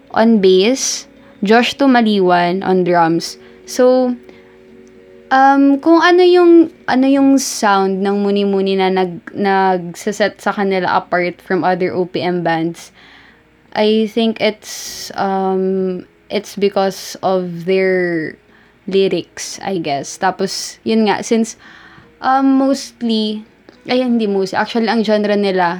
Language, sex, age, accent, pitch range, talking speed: Filipino, female, 20-39, native, 185-220 Hz, 120 wpm